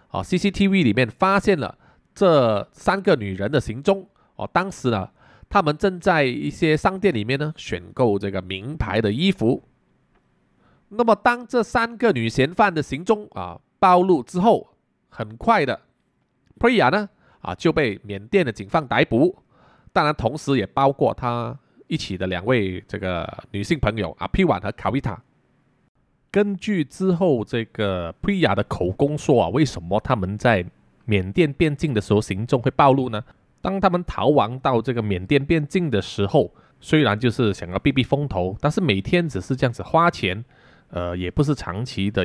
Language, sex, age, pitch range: Chinese, male, 20-39, 100-165 Hz